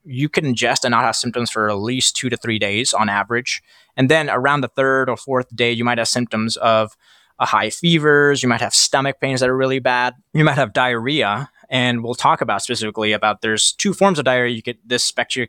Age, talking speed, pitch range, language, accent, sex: 20-39, 235 wpm, 110-125 Hz, English, American, male